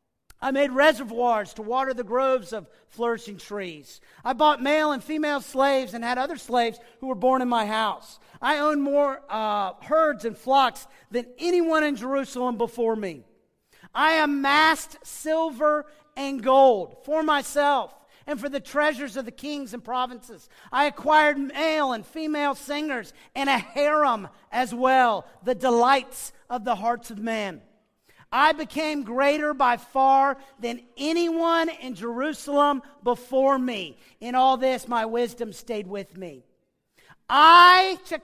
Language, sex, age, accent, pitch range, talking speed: English, male, 40-59, American, 240-300 Hz, 150 wpm